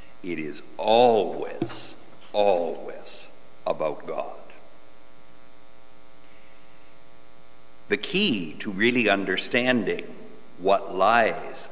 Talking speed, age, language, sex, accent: 65 wpm, 60-79, English, male, American